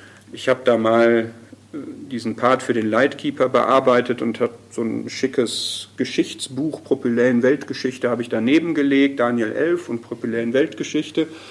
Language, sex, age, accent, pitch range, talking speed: German, male, 50-69, German, 110-155 Hz, 140 wpm